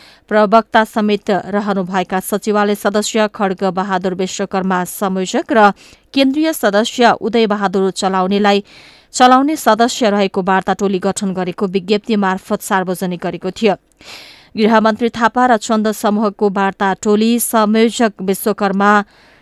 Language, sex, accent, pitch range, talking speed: English, female, Indian, 195-225 Hz, 100 wpm